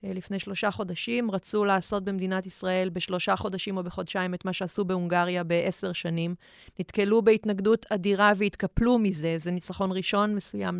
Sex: female